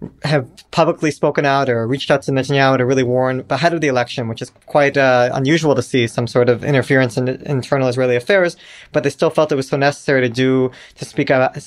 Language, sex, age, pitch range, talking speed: English, male, 20-39, 125-145 Hz, 230 wpm